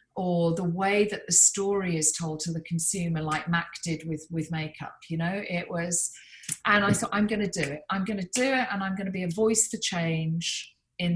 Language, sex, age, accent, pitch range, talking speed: English, female, 40-59, British, 175-220 Hz, 220 wpm